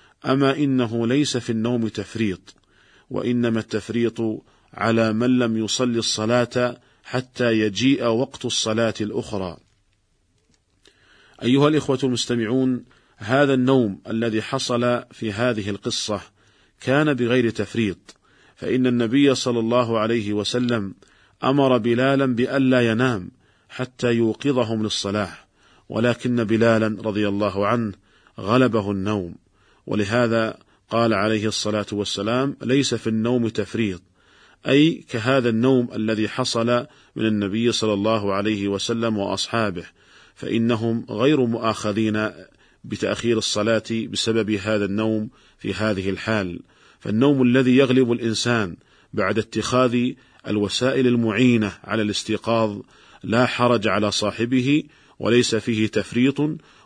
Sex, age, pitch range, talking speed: male, 40-59, 110-125 Hz, 105 wpm